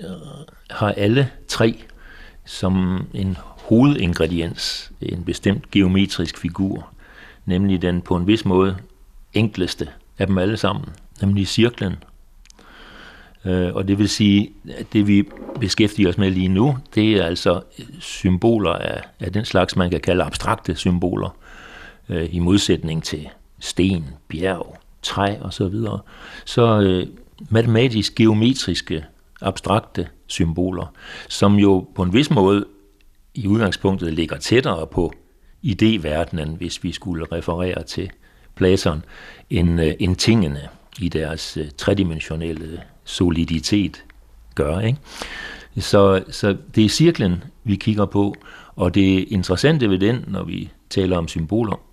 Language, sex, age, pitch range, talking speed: Danish, male, 60-79, 90-105 Hz, 125 wpm